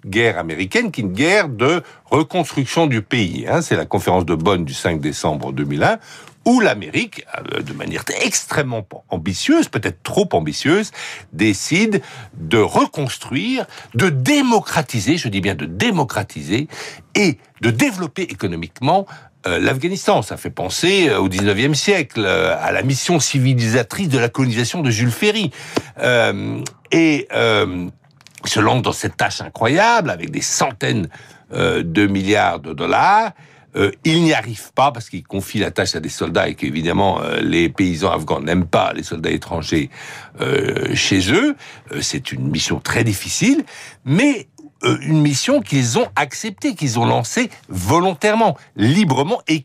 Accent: French